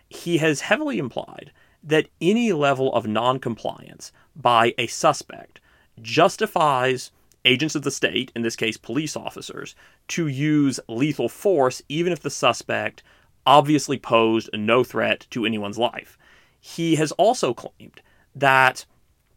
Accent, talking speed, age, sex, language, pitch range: American, 130 wpm, 30-49, male, English, 115-150 Hz